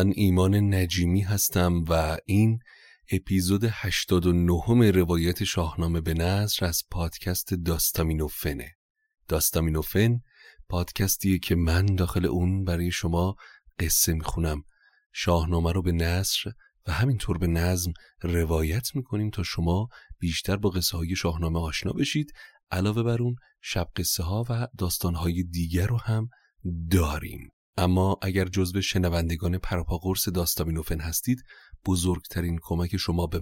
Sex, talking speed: male, 125 wpm